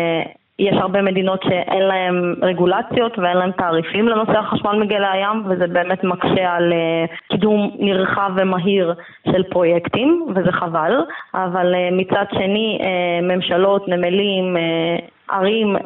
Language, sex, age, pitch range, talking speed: Hebrew, female, 20-39, 180-200 Hz, 115 wpm